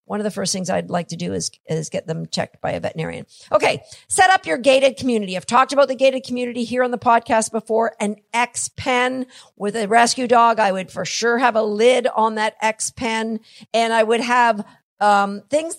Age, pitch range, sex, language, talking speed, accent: 50-69, 210-265 Hz, female, English, 215 wpm, American